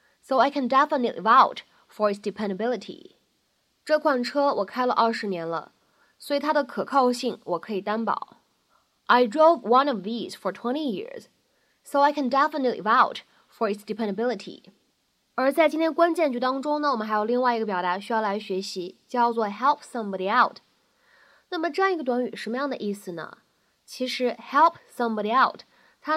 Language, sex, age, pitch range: Chinese, female, 20-39, 210-285 Hz